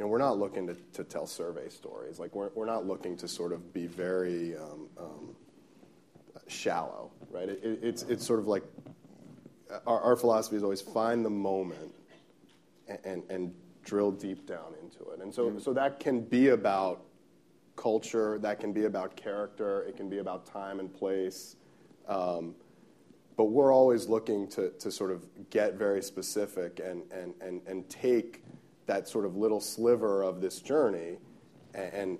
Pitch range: 90-110 Hz